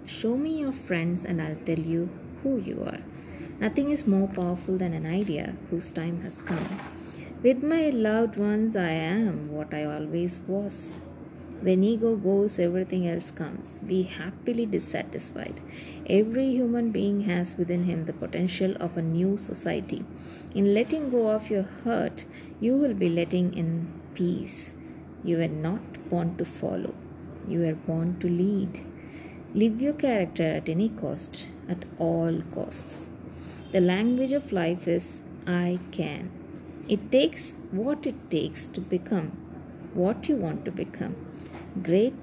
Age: 20-39